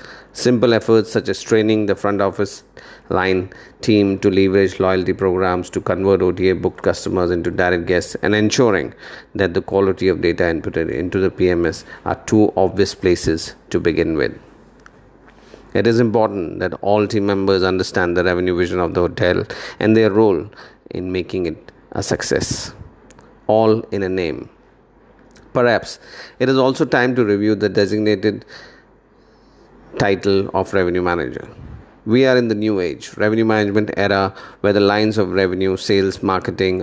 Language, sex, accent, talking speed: English, male, Indian, 150 wpm